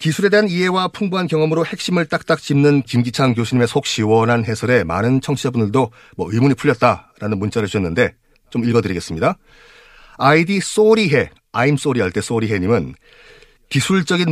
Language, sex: Korean, male